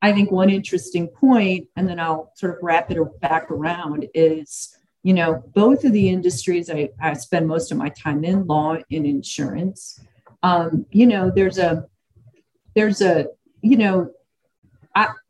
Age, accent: 50-69, American